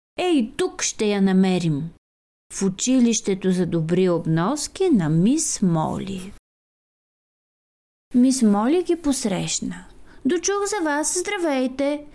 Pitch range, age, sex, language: 205-310 Hz, 30-49, female, Bulgarian